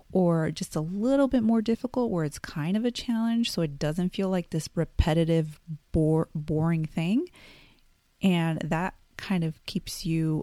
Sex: female